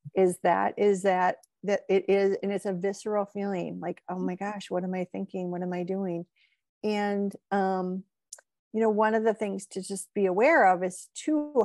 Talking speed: 200 wpm